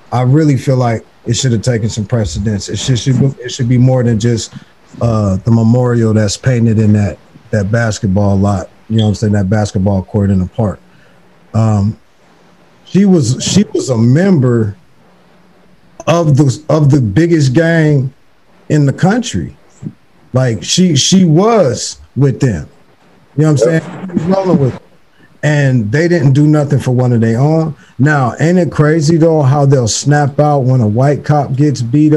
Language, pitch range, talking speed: English, 115-150 Hz, 180 wpm